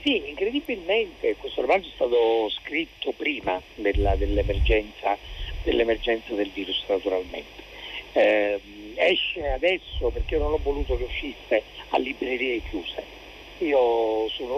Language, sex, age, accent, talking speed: Italian, male, 50-69, native, 120 wpm